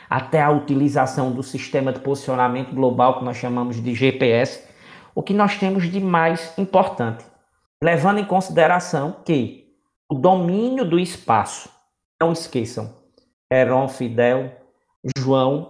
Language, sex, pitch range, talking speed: Portuguese, male, 130-185 Hz, 125 wpm